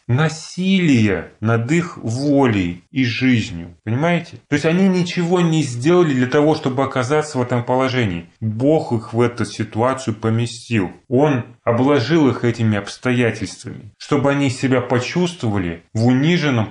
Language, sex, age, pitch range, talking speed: Russian, male, 30-49, 110-150 Hz, 135 wpm